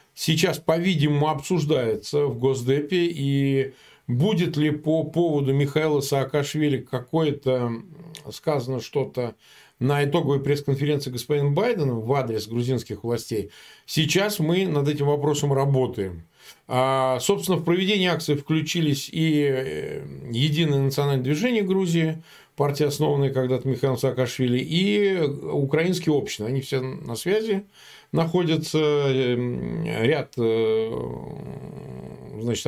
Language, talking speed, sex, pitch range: Russian, 105 wpm, male, 130-155 Hz